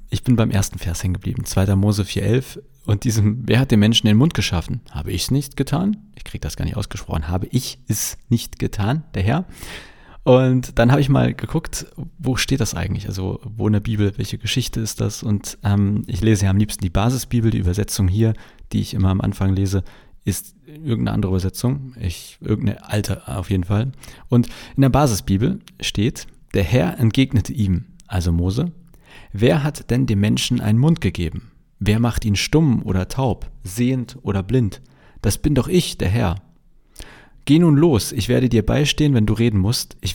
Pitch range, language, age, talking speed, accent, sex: 100-130 Hz, German, 40-59, 195 wpm, German, male